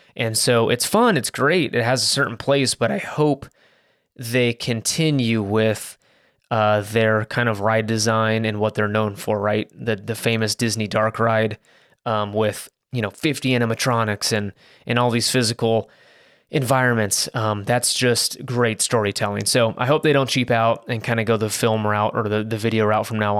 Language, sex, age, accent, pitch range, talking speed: English, male, 20-39, American, 110-130 Hz, 185 wpm